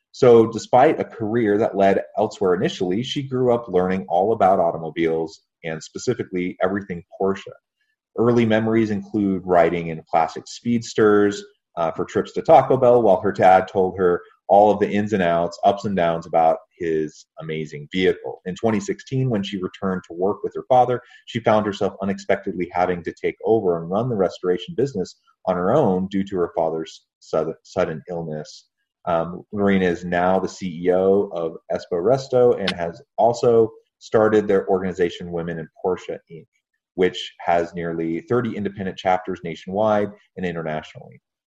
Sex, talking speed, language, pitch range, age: male, 160 wpm, English, 90-110 Hz, 30-49